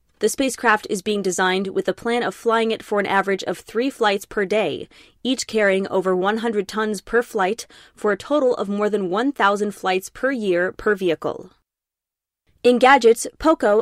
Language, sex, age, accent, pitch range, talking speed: English, female, 20-39, American, 200-240 Hz, 180 wpm